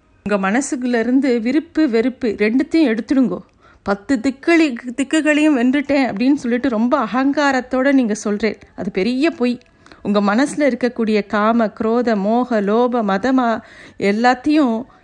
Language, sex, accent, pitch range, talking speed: Tamil, female, native, 210-270 Hz, 110 wpm